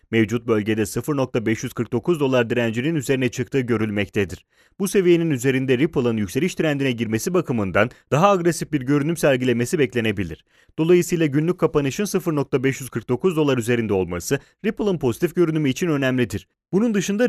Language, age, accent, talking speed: Italian, 30-49, Turkish, 125 wpm